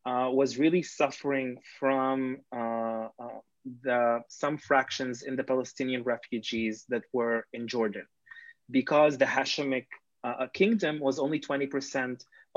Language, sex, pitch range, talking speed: English, male, 125-150 Hz, 125 wpm